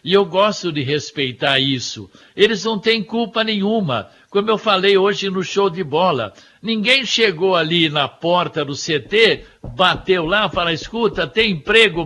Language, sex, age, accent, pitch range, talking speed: Portuguese, male, 60-79, Brazilian, 160-205 Hz, 160 wpm